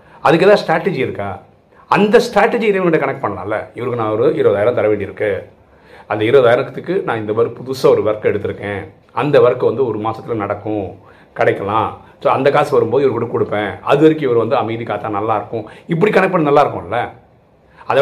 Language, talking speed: Tamil, 160 wpm